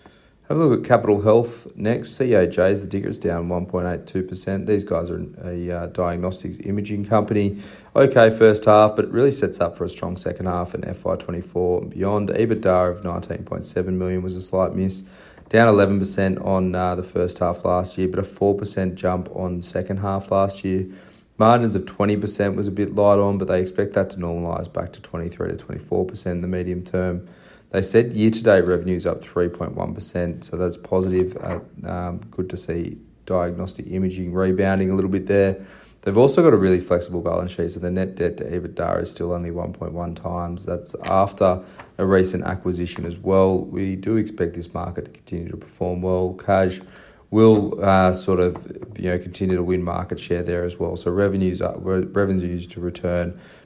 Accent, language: Australian, English